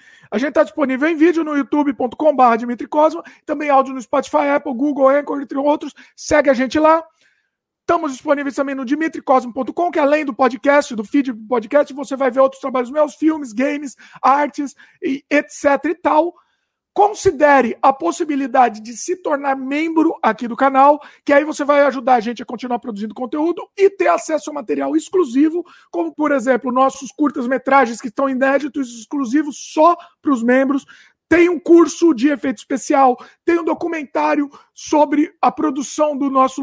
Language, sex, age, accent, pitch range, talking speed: Portuguese, male, 50-69, Brazilian, 265-310 Hz, 165 wpm